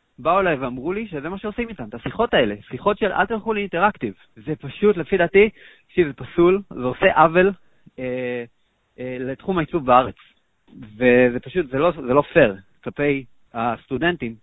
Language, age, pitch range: Hebrew, 30-49, 120-160 Hz